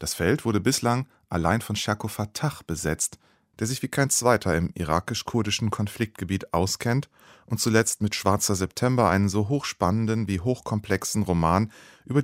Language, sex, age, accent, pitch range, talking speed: German, male, 30-49, German, 95-125 Hz, 145 wpm